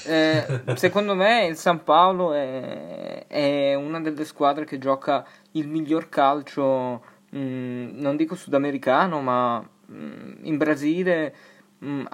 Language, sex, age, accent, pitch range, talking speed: Italian, male, 20-39, native, 140-175 Hz, 125 wpm